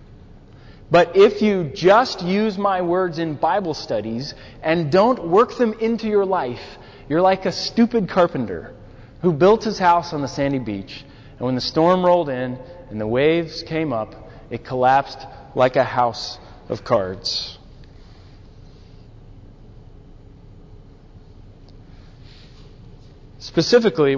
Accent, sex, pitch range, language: American, male, 120-170 Hz, English